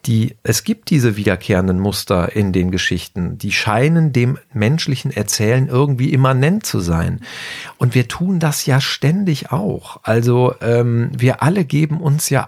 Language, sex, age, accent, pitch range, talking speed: German, male, 50-69, German, 120-160 Hz, 150 wpm